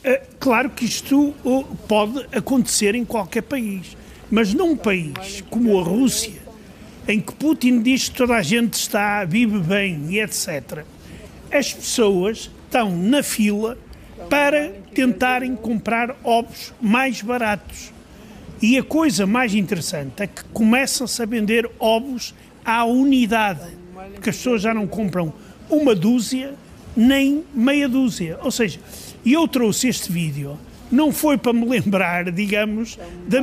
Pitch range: 205-255 Hz